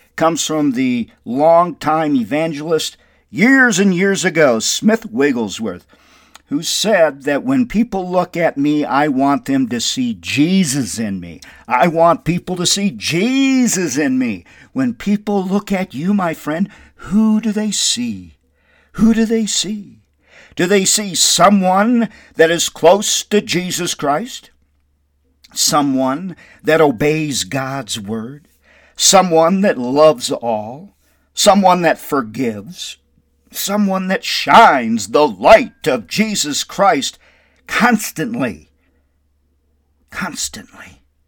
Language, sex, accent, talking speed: English, male, American, 120 wpm